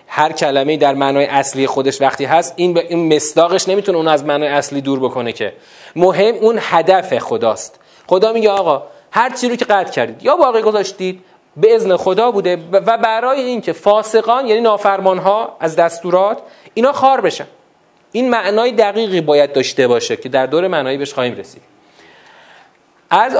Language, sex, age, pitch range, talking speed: Persian, male, 40-59, 140-195 Hz, 165 wpm